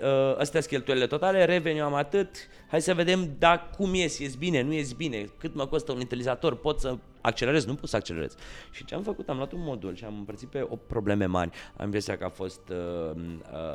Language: Romanian